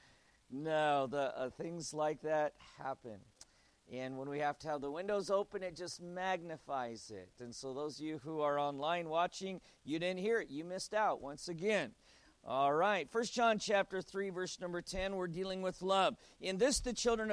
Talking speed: 190 wpm